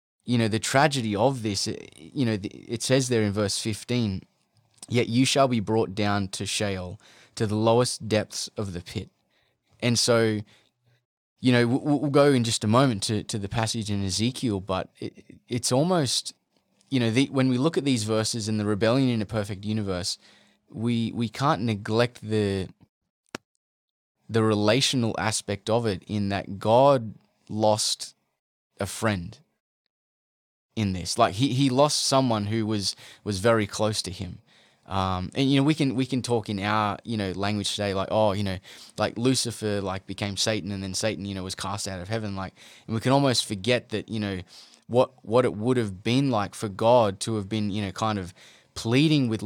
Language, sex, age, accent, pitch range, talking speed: English, male, 20-39, Australian, 100-120 Hz, 190 wpm